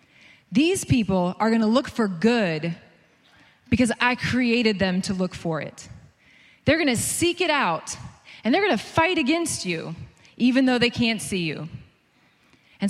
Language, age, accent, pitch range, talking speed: English, 20-39, American, 195-275 Hz, 155 wpm